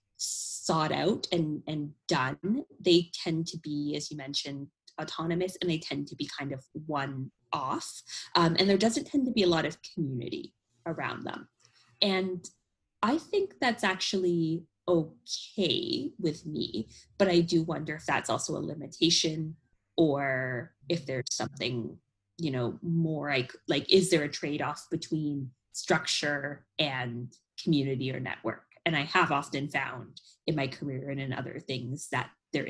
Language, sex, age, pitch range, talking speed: English, female, 20-39, 135-175 Hz, 155 wpm